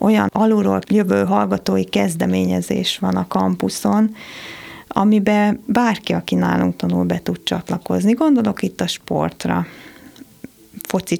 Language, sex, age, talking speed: Hungarian, female, 30-49, 115 wpm